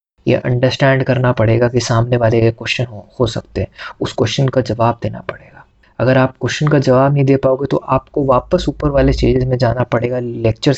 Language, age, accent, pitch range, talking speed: Hindi, 20-39, native, 120-140 Hz, 205 wpm